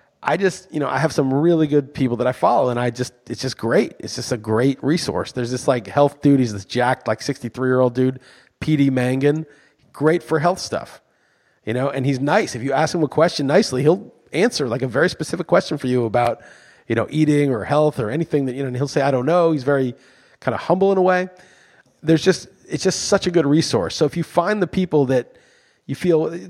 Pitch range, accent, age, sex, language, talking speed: 130-160 Hz, American, 30-49, male, English, 240 wpm